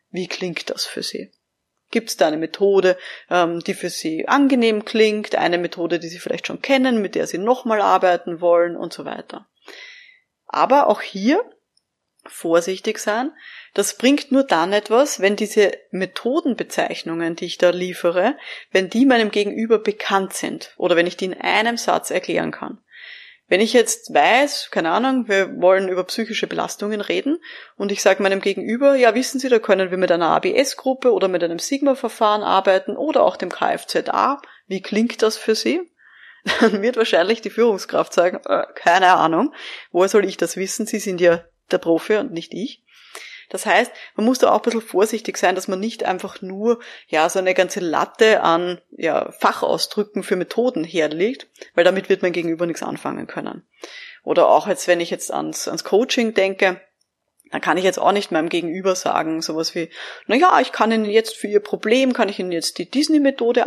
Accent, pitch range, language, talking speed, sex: German, 180-235 Hz, German, 185 wpm, female